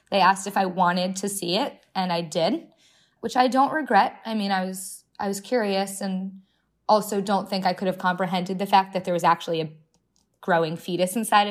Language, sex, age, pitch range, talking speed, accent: English, female, 20-39, 170-200 Hz, 210 wpm, American